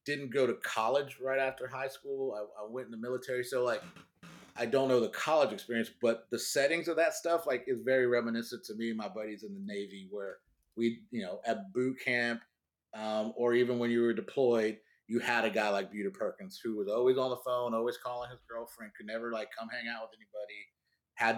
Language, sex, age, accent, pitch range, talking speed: English, male, 30-49, American, 115-130 Hz, 225 wpm